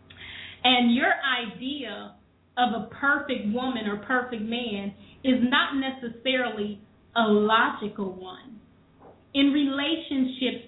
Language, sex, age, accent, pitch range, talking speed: English, female, 30-49, American, 210-265 Hz, 100 wpm